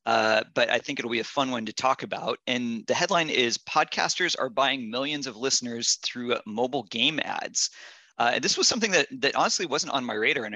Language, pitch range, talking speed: English, 115-140 Hz, 220 wpm